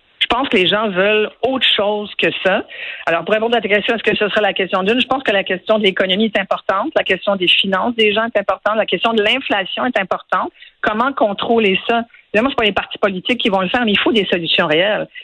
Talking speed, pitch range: 255 wpm, 190-235 Hz